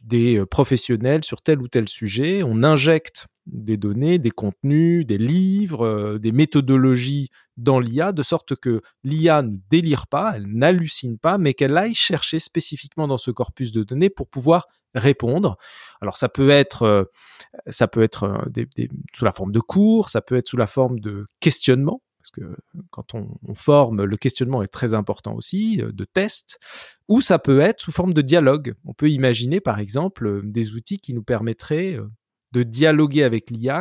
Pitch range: 115-165 Hz